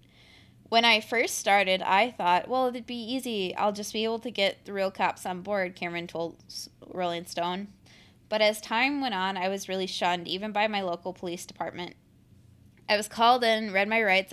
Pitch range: 180-210 Hz